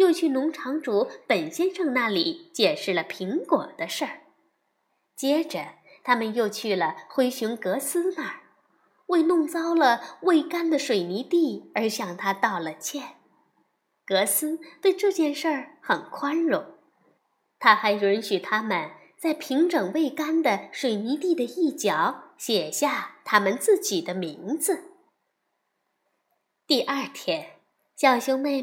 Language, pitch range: Chinese, 220-330 Hz